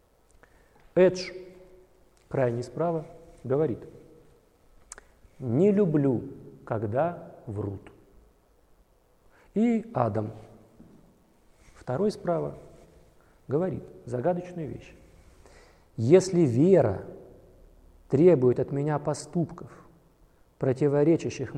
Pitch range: 120-160 Hz